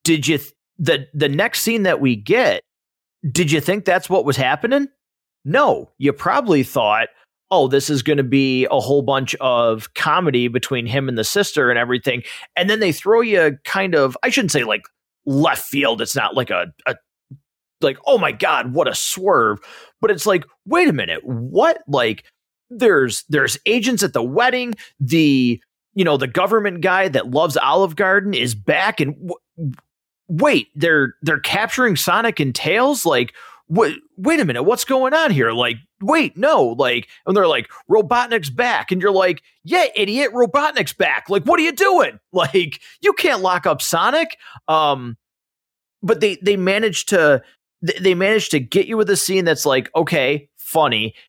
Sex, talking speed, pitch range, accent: male, 180 wpm, 140-230 Hz, American